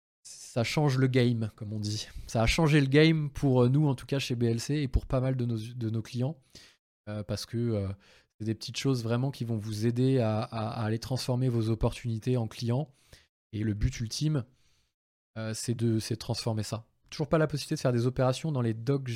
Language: French